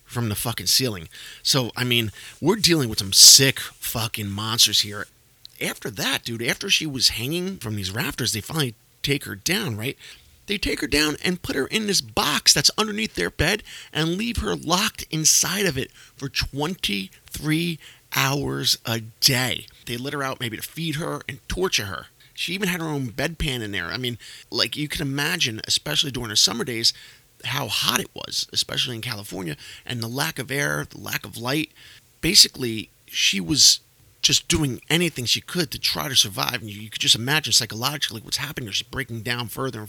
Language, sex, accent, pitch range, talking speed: English, male, American, 115-150 Hz, 195 wpm